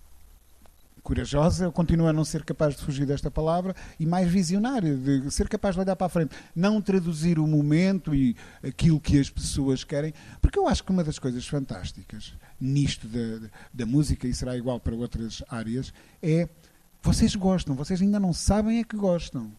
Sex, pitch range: male, 130-180 Hz